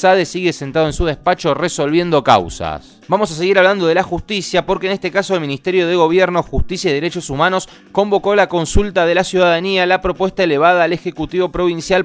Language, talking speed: Spanish, 195 wpm